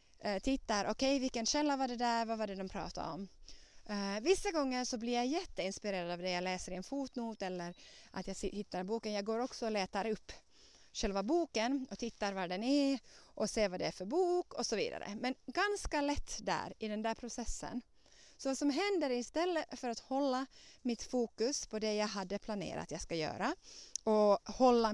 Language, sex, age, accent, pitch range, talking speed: Swedish, female, 30-49, native, 195-265 Hz, 205 wpm